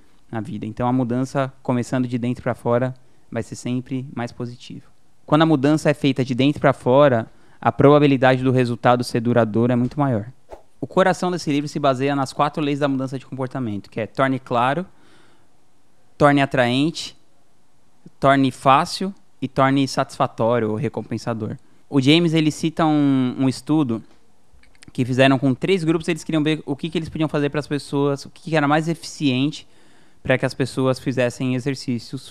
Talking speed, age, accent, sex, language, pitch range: 175 wpm, 20-39, Brazilian, male, Portuguese, 125-145 Hz